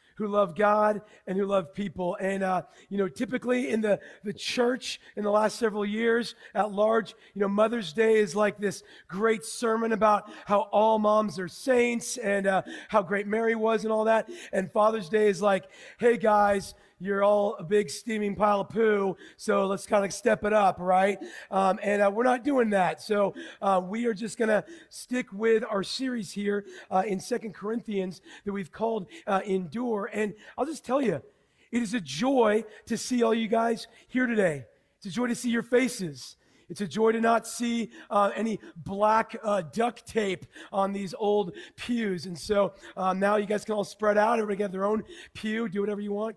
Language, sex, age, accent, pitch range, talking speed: English, male, 40-59, American, 200-225 Hz, 200 wpm